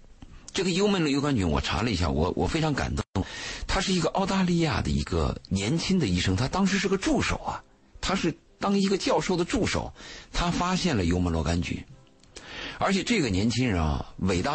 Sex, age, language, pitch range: male, 50-69, Chinese, 80-135 Hz